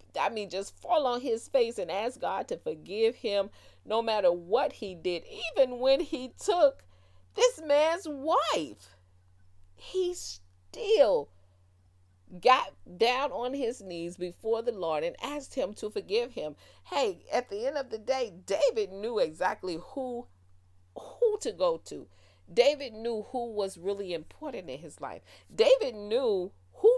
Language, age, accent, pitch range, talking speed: English, 40-59, American, 175-290 Hz, 150 wpm